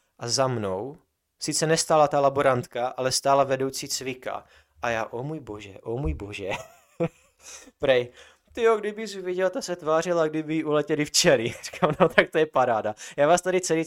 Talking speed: 185 wpm